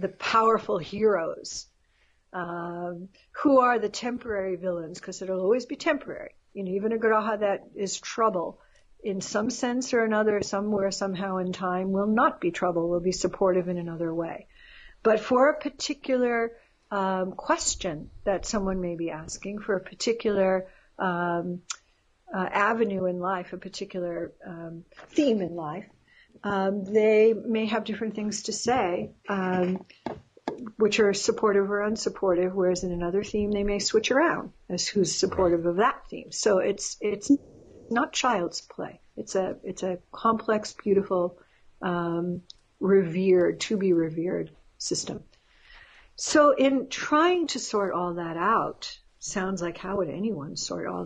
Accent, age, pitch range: American, 60-79, 180-220 Hz